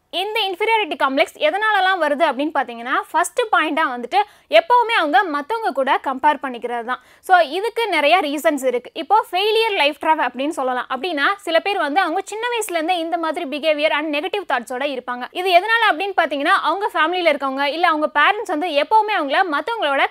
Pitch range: 285-380 Hz